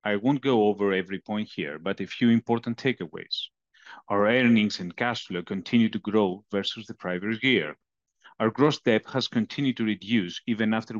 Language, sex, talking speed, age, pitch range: English, male, 180 wpm, 40-59, 100-125 Hz